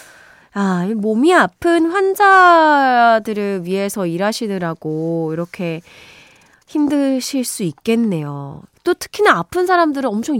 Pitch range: 185-280 Hz